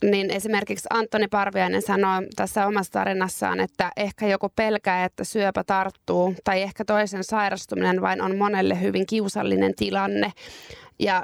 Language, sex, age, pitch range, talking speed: Finnish, female, 20-39, 195-225 Hz, 140 wpm